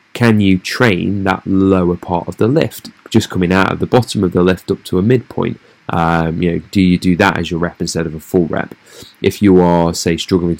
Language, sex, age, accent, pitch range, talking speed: English, male, 20-39, British, 80-90 Hz, 225 wpm